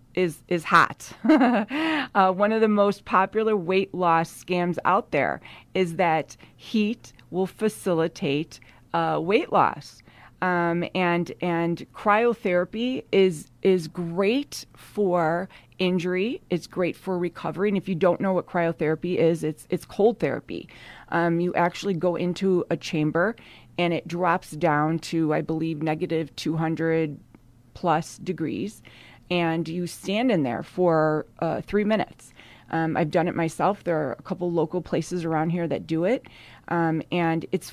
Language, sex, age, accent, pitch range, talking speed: English, female, 30-49, American, 160-190 Hz, 150 wpm